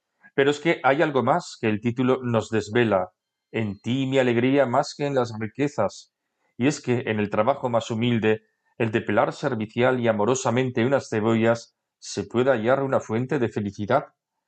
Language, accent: Spanish, Spanish